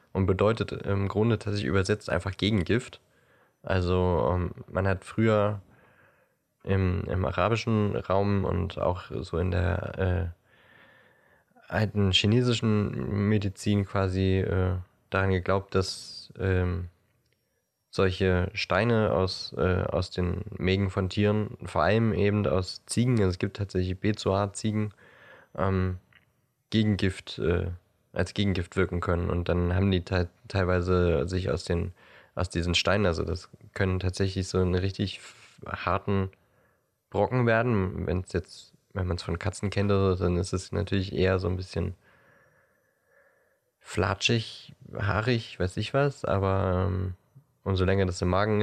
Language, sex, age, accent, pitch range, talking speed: German, male, 20-39, German, 90-105 Hz, 135 wpm